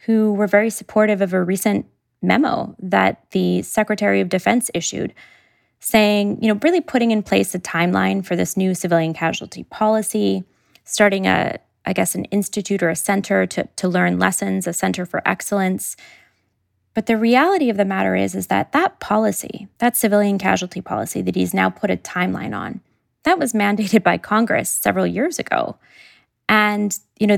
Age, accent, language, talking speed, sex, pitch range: 20-39, American, English, 175 wpm, female, 175-220 Hz